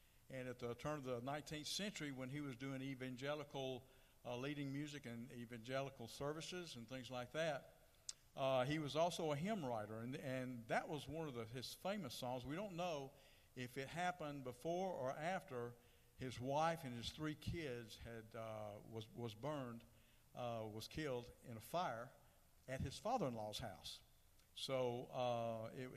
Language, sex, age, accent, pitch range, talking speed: English, male, 60-79, American, 115-150 Hz, 170 wpm